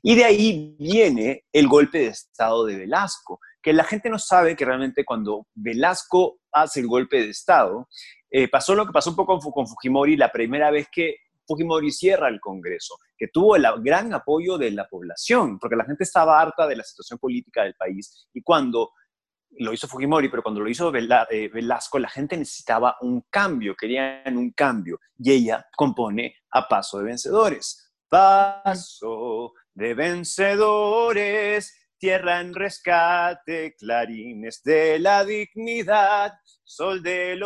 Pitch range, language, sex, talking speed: 140-205 Hz, Spanish, male, 155 wpm